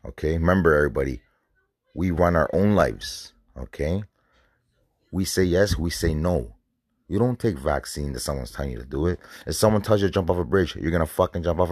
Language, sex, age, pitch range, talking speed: English, male, 30-49, 75-95 Hz, 205 wpm